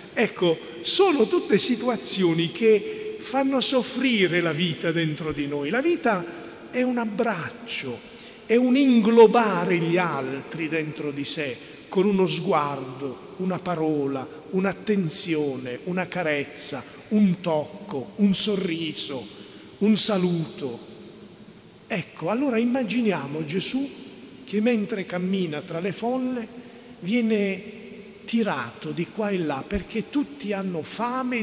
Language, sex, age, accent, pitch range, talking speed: Italian, male, 40-59, native, 165-225 Hz, 115 wpm